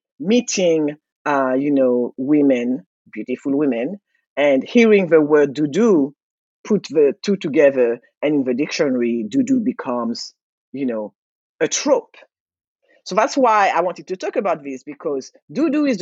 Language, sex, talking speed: English, female, 140 wpm